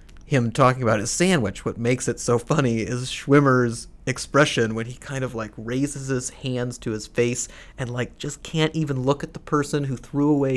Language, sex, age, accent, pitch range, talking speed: English, male, 30-49, American, 110-140 Hz, 205 wpm